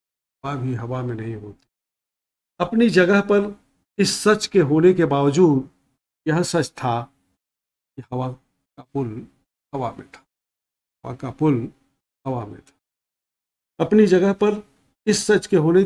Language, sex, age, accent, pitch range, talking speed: Hindi, male, 50-69, native, 120-160 Hz, 145 wpm